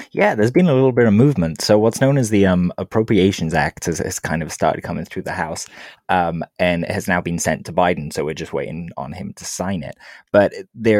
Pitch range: 85-105 Hz